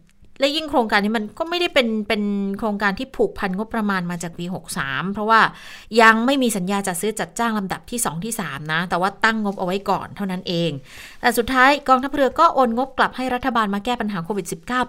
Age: 20-39